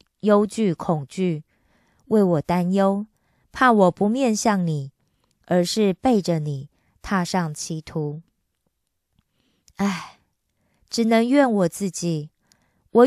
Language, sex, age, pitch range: Korean, female, 20-39, 170-220 Hz